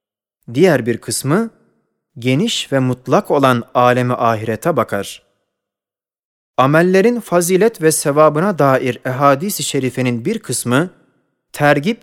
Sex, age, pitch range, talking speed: male, 30-49, 125-195 Hz, 100 wpm